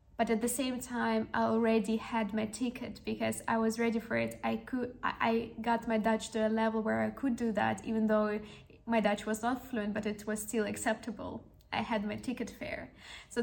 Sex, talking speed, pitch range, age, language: female, 215 wpm, 210-235 Hz, 10-29, English